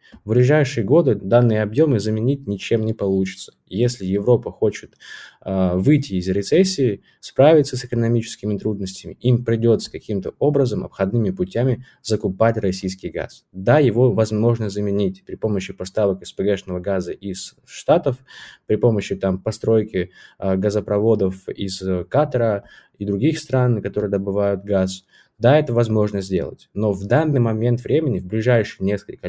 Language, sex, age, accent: Russian, male, 20-39, native